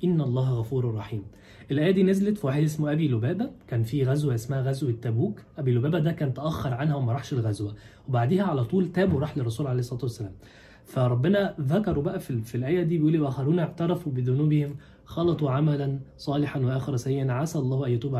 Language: Arabic